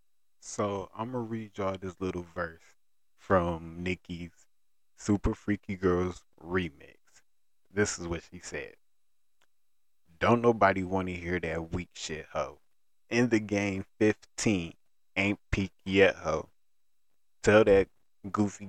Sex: male